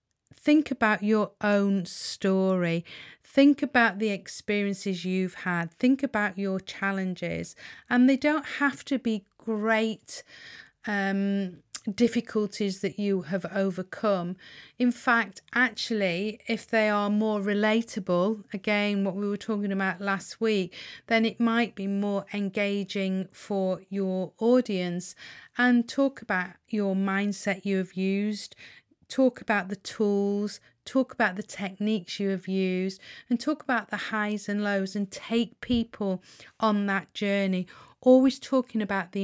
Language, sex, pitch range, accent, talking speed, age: English, female, 190-225 Hz, British, 135 wpm, 40-59